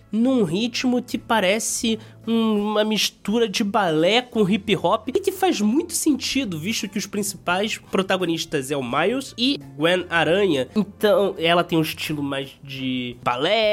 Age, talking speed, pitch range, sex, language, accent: 20-39, 150 wpm, 150-235 Hz, male, Portuguese, Brazilian